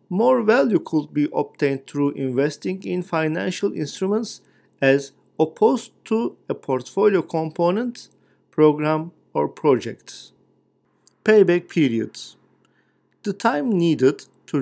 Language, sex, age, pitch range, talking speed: Turkish, male, 50-69, 140-195 Hz, 105 wpm